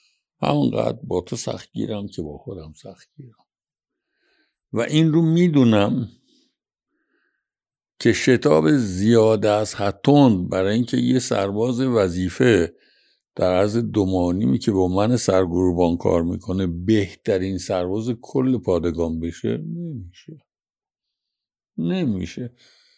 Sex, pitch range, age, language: male, 90-150 Hz, 60-79, Persian